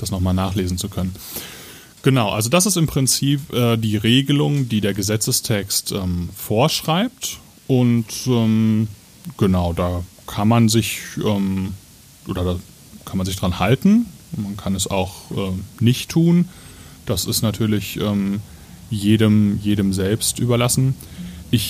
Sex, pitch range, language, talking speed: male, 100-125 Hz, German, 140 wpm